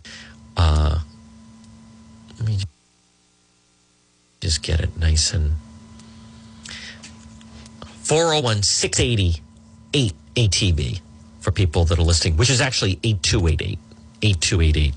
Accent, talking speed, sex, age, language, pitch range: American, 75 wpm, male, 40-59, English, 85-115 Hz